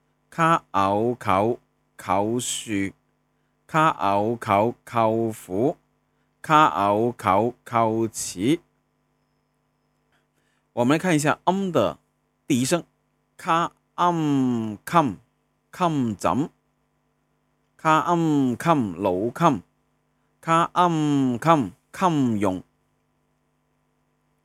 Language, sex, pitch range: Chinese, male, 95-150 Hz